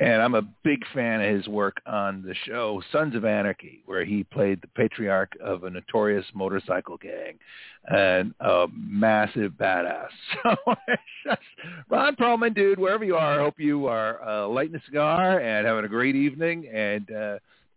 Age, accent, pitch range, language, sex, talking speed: 50-69, American, 110-160 Hz, English, male, 170 wpm